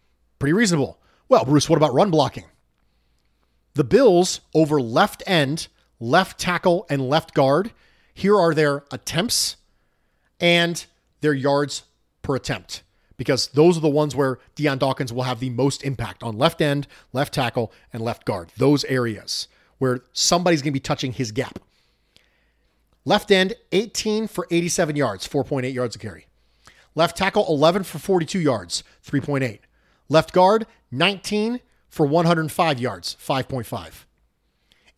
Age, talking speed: 40-59, 140 wpm